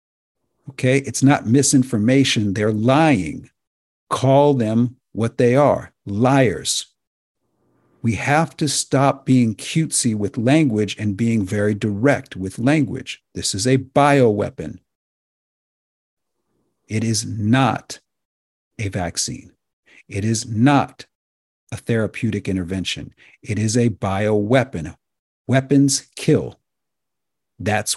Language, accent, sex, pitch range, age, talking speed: English, American, male, 105-135 Hz, 50-69, 105 wpm